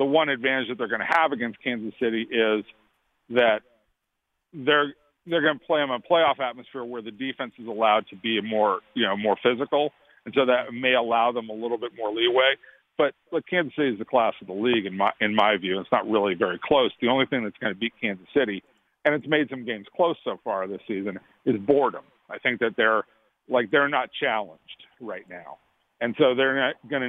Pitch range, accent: 115-135 Hz, American